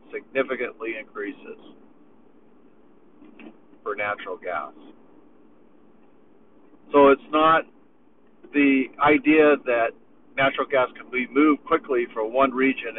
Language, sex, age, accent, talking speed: English, male, 50-69, American, 90 wpm